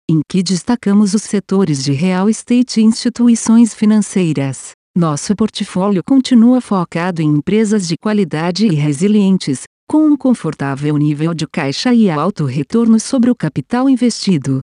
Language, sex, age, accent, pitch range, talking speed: Portuguese, female, 50-69, Brazilian, 160-225 Hz, 140 wpm